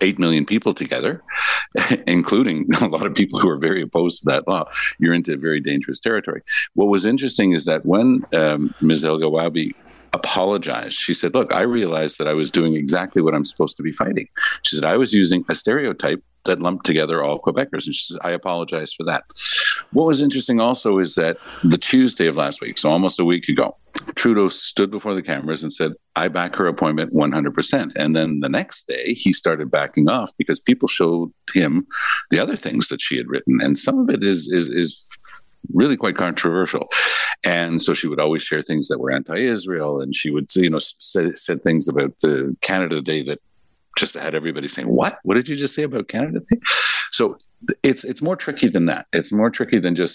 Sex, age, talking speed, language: male, 50-69, 205 wpm, English